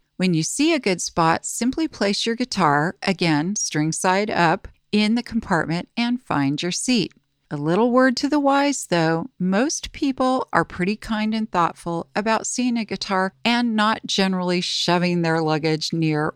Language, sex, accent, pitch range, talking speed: English, female, American, 170-220 Hz, 170 wpm